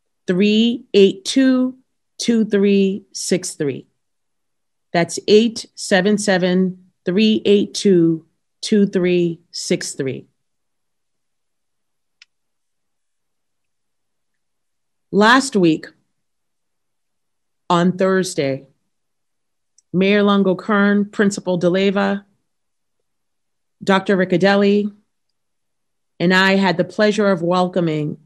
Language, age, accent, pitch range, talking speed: English, 40-59, American, 165-200 Hz, 75 wpm